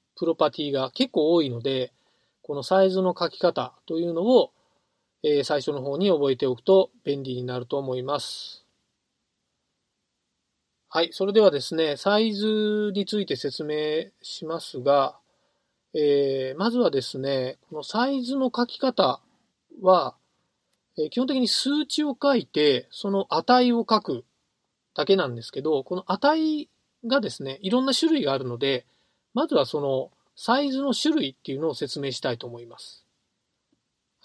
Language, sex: Japanese, male